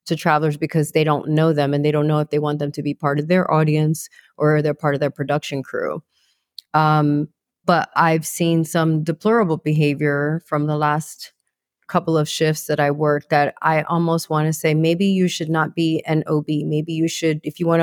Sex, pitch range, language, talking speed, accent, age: female, 155-200 Hz, English, 210 wpm, American, 30-49